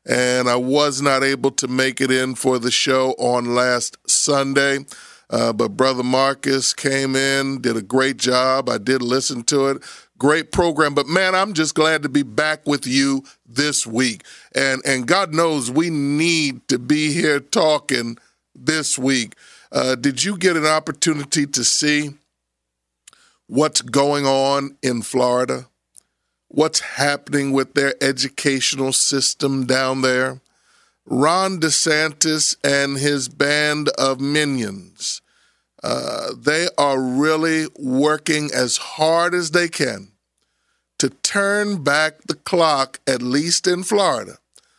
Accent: American